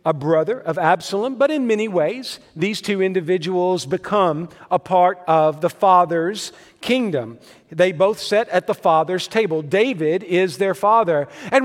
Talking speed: 155 wpm